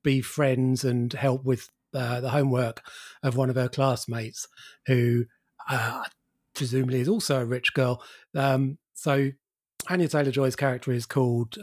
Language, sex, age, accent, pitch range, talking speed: English, male, 30-49, British, 125-155 Hz, 150 wpm